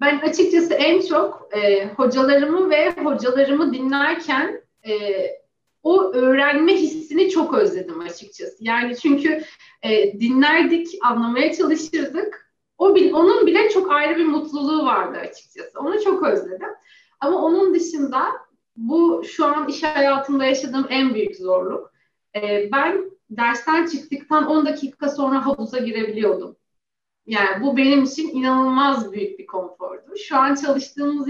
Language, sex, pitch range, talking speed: Turkish, female, 235-325 Hz, 130 wpm